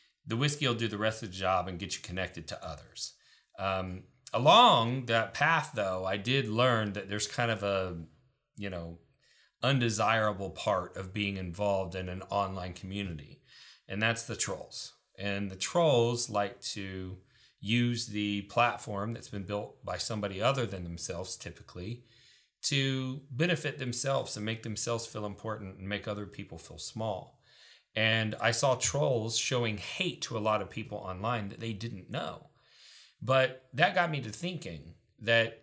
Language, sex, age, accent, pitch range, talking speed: English, male, 40-59, American, 100-125 Hz, 165 wpm